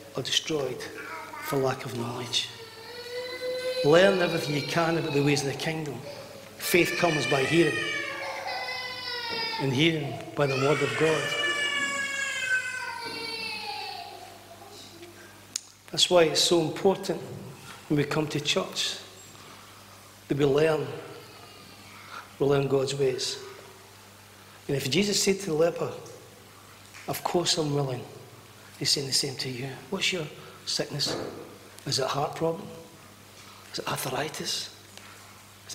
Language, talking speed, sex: English, 125 wpm, male